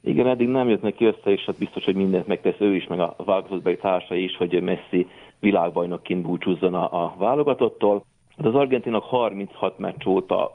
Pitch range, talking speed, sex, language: 95-120 Hz, 170 wpm, male, Hungarian